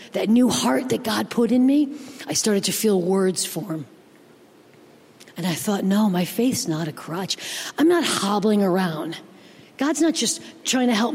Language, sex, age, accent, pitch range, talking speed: English, female, 40-59, American, 200-280 Hz, 180 wpm